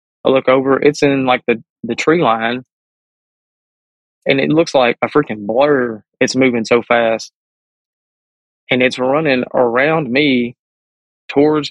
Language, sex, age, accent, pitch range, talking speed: English, male, 20-39, American, 120-145 Hz, 140 wpm